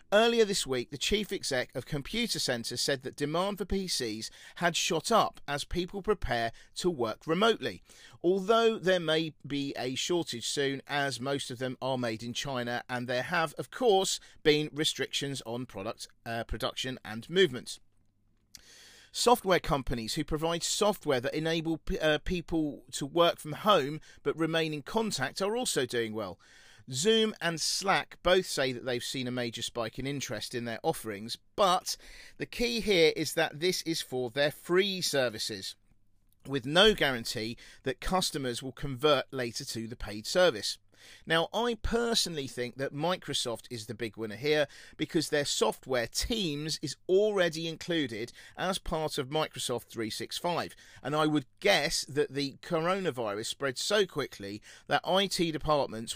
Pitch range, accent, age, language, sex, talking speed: 120-165 Hz, British, 40-59, English, male, 160 wpm